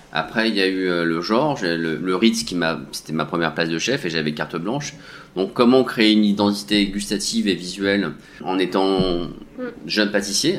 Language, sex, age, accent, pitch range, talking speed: French, male, 30-49, French, 90-115 Hz, 195 wpm